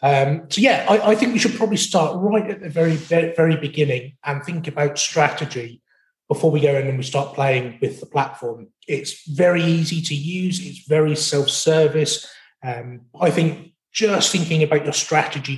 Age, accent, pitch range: 30-49, British, 145-185 Hz